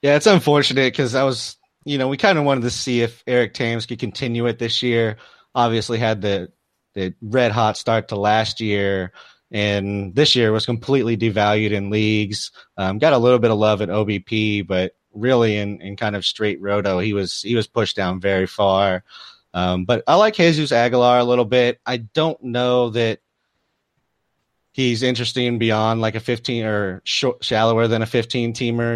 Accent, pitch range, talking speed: American, 105-125 Hz, 185 wpm